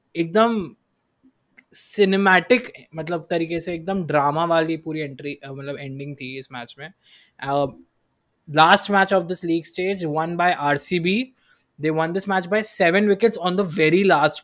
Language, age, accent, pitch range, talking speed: Hindi, 20-39, native, 145-190 Hz, 150 wpm